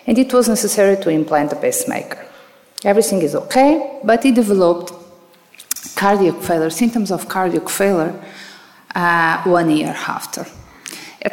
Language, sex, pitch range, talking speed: English, female, 160-200 Hz, 130 wpm